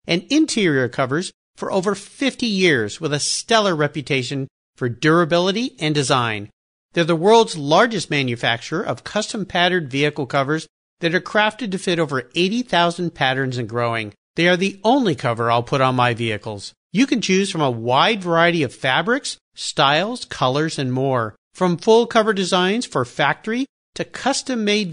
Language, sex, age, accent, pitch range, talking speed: English, male, 50-69, American, 140-210 Hz, 160 wpm